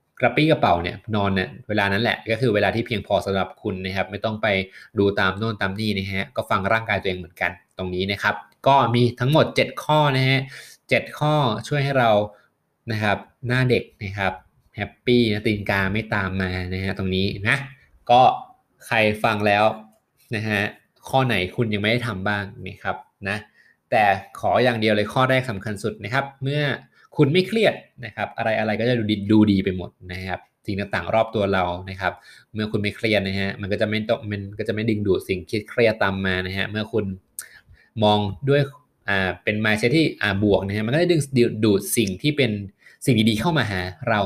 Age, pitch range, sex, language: 20-39, 95-120 Hz, male, Thai